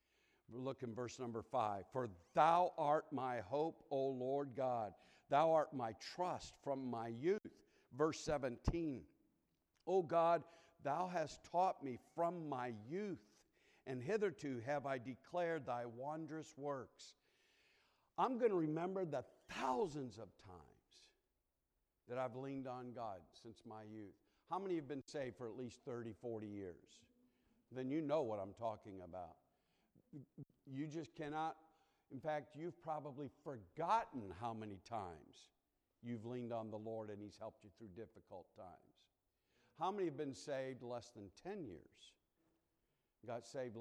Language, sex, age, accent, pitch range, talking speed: English, male, 60-79, American, 110-145 Hz, 145 wpm